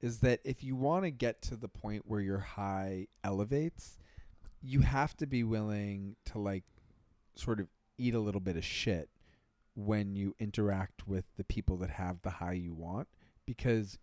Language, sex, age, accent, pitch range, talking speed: English, male, 30-49, American, 95-120 Hz, 180 wpm